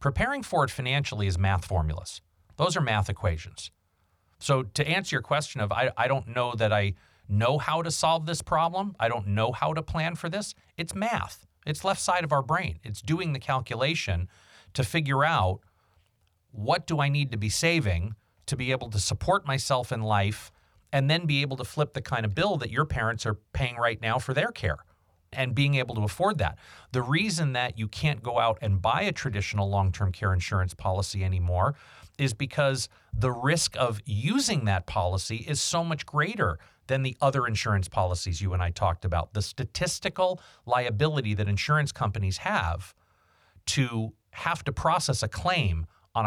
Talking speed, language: 190 wpm, English